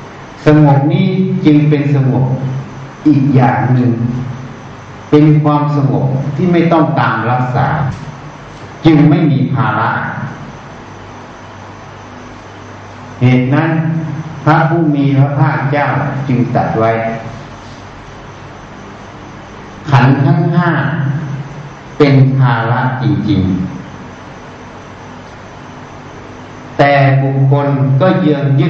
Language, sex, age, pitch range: Thai, male, 60-79, 125-150 Hz